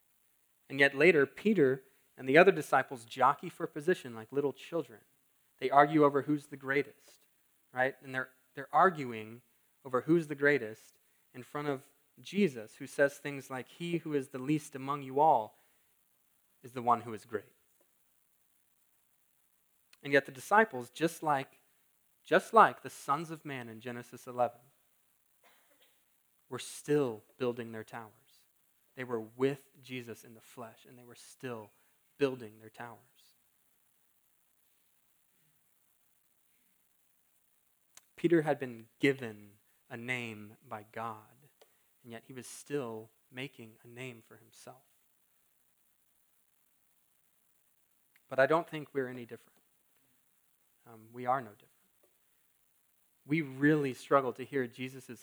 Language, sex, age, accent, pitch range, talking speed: English, male, 20-39, American, 120-145 Hz, 130 wpm